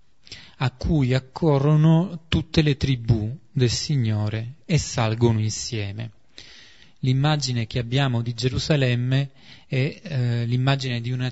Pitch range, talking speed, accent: 115-140 Hz, 110 wpm, native